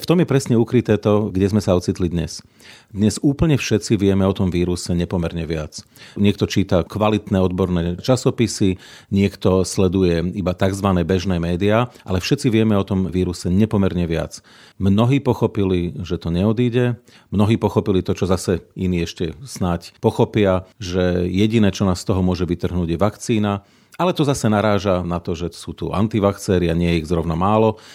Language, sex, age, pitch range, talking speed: Slovak, male, 40-59, 90-110 Hz, 170 wpm